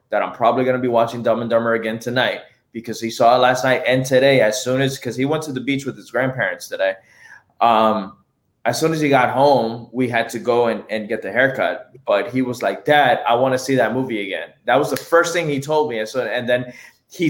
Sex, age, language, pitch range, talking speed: male, 20-39, English, 115-140 Hz, 255 wpm